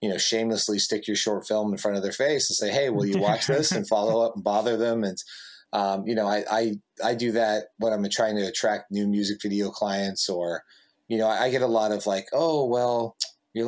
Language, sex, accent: English, male, American